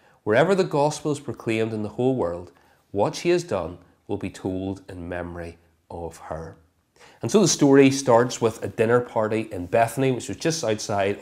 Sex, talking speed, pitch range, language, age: male, 185 wpm, 100-135 Hz, English, 30-49